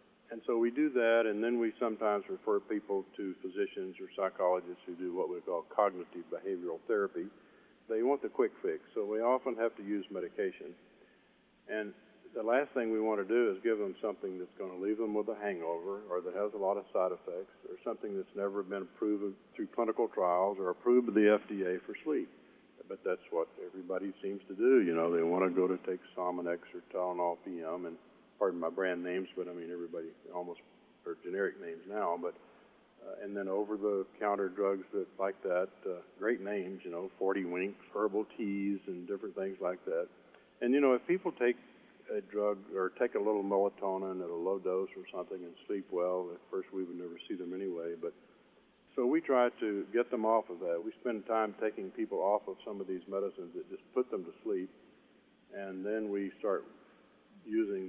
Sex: male